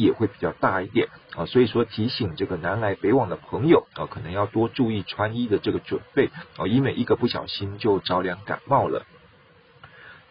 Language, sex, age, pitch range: Chinese, male, 50-69, 95-125 Hz